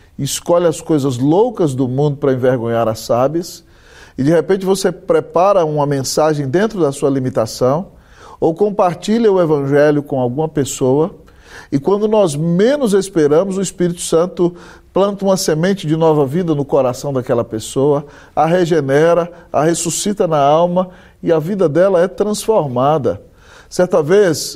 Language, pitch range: Portuguese, 130-175 Hz